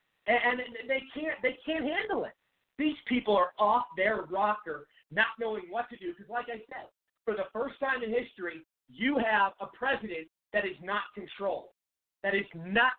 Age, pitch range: 40-59, 190-245 Hz